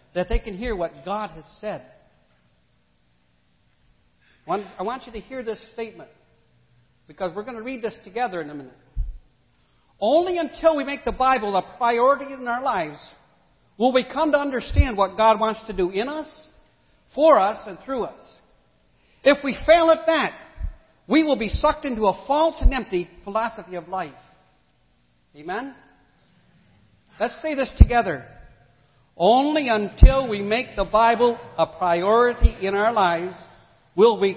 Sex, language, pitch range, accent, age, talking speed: male, English, 175-255 Hz, American, 60-79, 155 wpm